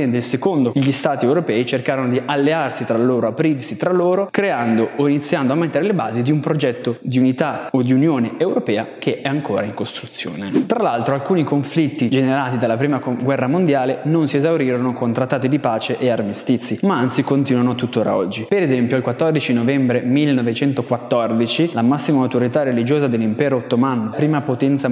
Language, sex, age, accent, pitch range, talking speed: Italian, male, 20-39, native, 125-155 Hz, 170 wpm